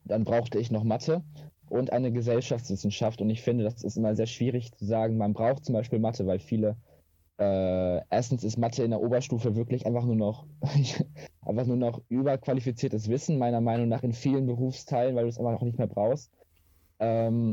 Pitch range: 105-125 Hz